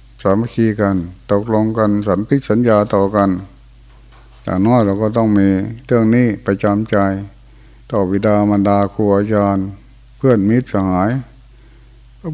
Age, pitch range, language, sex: 60-79, 100-120 Hz, Thai, male